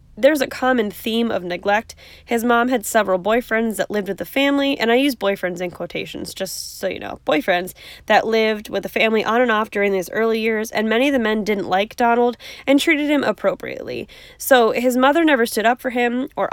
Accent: American